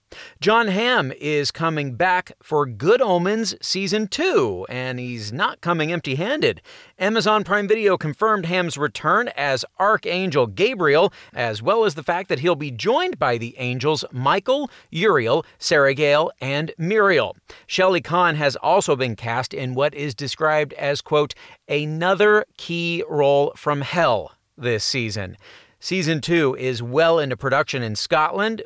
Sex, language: male, English